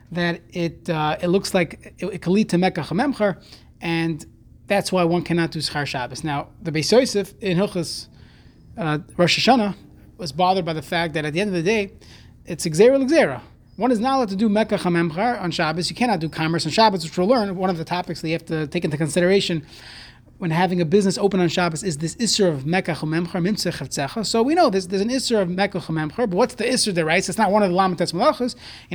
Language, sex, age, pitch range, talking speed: English, male, 30-49, 170-220 Hz, 235 wpm